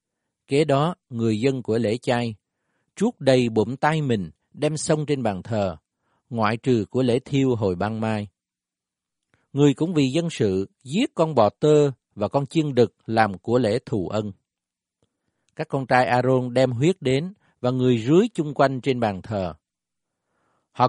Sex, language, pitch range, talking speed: male, Vietnamese, 110-155 Hz, 170 wpm